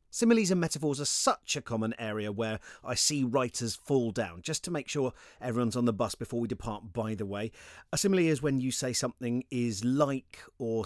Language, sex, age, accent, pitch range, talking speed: English, male, 40-59, British, 110-145 Hz, 210 wpm